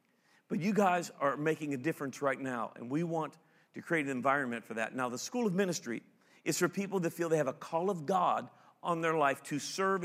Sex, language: male, English